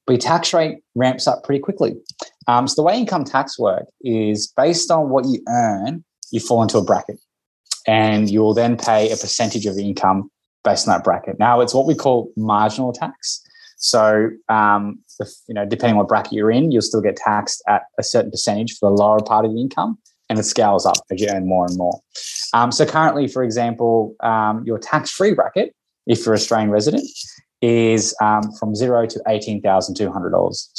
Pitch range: 105-130 Hz